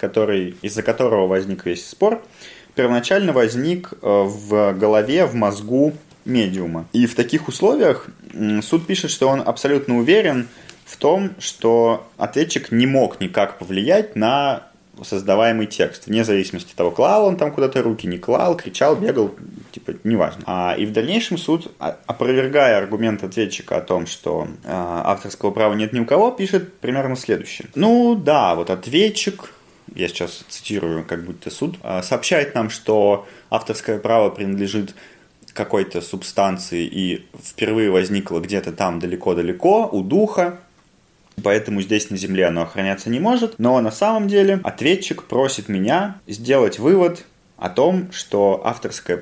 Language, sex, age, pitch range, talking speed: Russian, male, 20-39, 100-160 Hz, 140 wpm